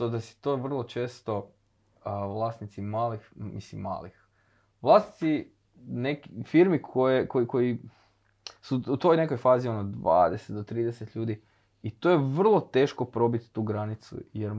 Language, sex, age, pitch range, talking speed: Croatian, male, 20-39, 100-125 Hz, 140 wpm